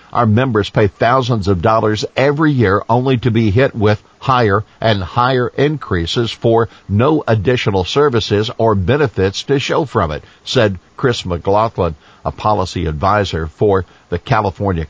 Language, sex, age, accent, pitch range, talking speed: English, male, 50-69, American, 95-120 Hz, 145 wpm